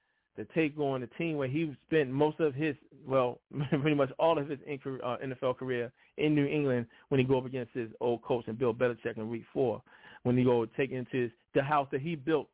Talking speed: 240 wpm